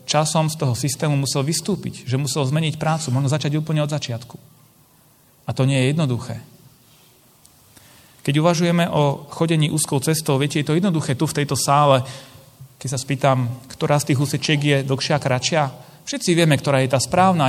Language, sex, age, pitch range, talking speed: Slovak, male, 30-49, 125-155 Hz, 170 wpm